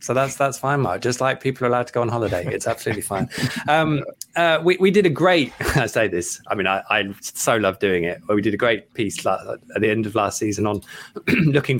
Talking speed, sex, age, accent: 250 wpm, male, 20-39, British